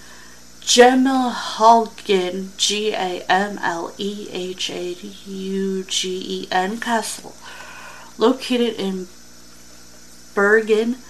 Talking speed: 90 wpm